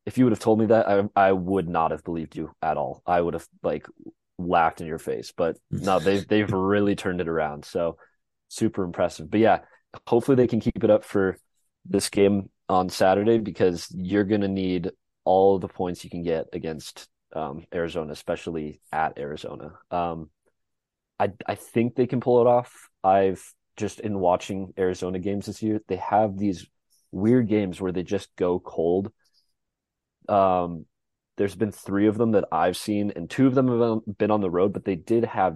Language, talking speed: English, 190 wpm